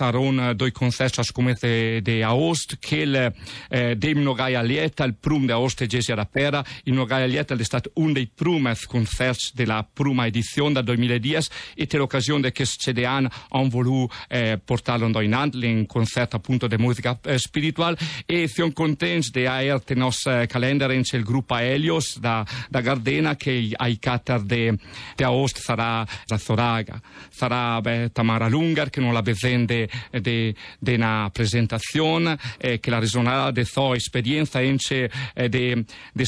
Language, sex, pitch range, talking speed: Italian, male, 115-140 Hz, 165 wpm